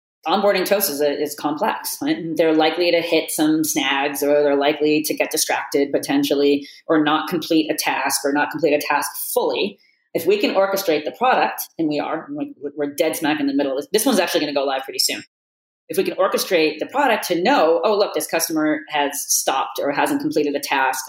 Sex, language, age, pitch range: female, English, 40-59, 145-205 Hz